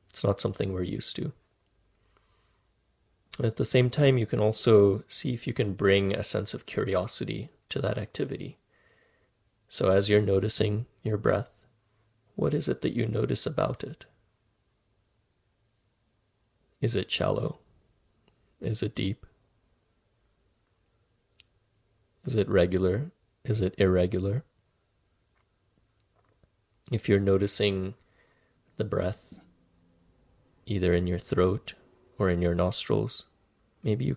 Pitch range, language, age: 95-110 Hz, English, 30-49